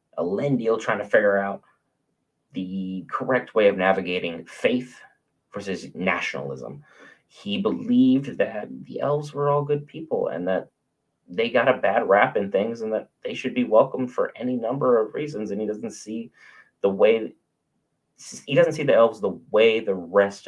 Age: 30-49